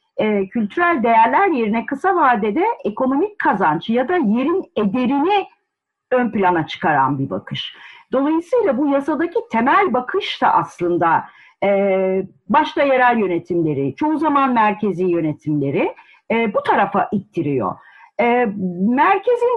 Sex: female